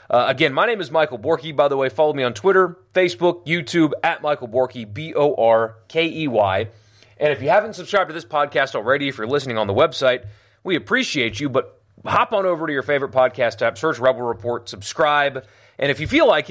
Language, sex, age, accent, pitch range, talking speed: English, male, 30-49, American, 115-160 Hz, 205 wpm